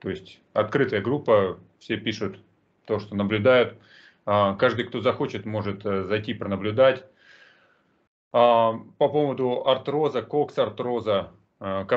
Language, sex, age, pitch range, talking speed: Russian, male, 30-49, 95-115 Hz, 105 wpm